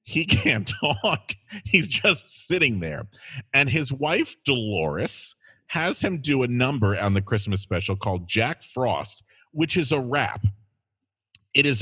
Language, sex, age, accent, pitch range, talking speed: English, male, 40-59, American, 110-180 Hz, 145 wpm